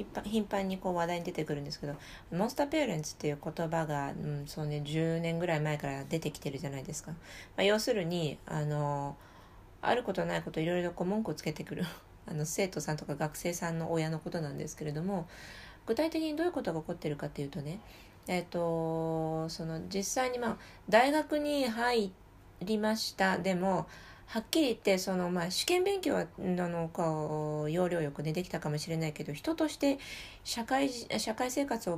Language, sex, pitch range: Japanese, female, 155-195 Hz